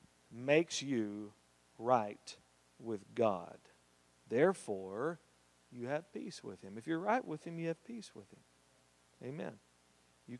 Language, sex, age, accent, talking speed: English, male, 50-69, American, 135 wpm